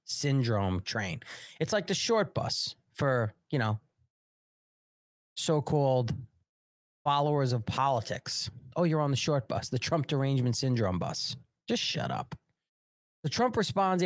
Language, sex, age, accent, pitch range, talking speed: English, male, 30-49, American, 115-150 Hz, 130 wpm